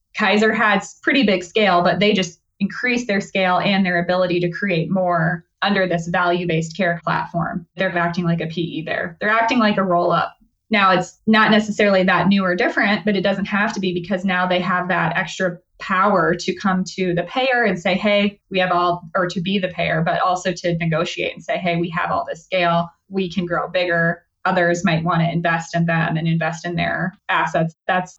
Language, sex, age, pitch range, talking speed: English, female, 20-39, 170-190 Hz, 210 wpm